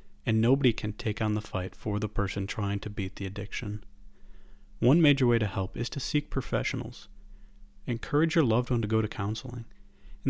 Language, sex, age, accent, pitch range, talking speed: English, male, 40-59, American, 100-125 Hz, 190 wpm